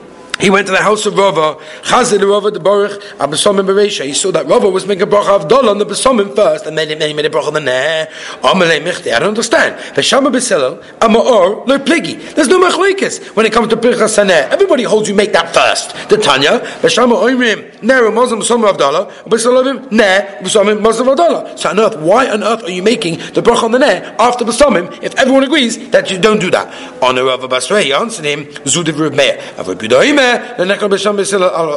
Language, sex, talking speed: English, male, 160 wpm